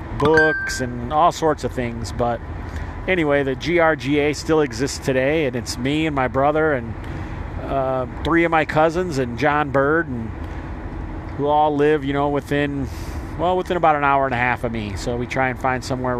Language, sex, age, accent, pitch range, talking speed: English, male, 40-59, American, 110-140 Hz, 190 wpm